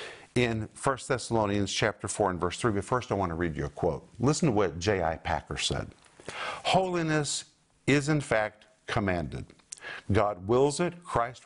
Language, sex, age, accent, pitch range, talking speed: English, male, 50-69, American, 105-140 Hz, 170 wpm